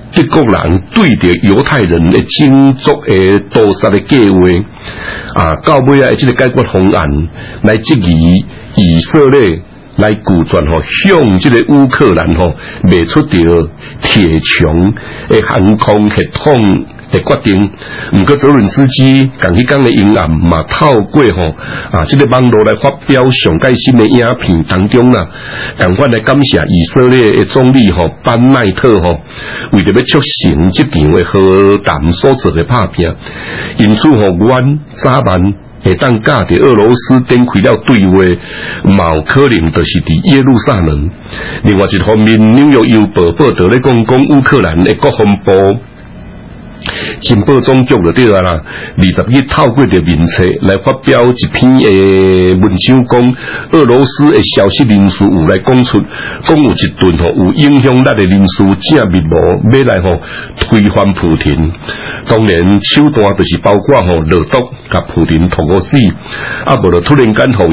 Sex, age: male, 60-79